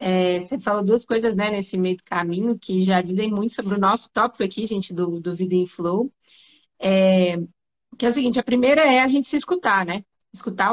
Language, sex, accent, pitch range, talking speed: Portuguese, female, Brazilian, 195-245 Hz, 205 wpm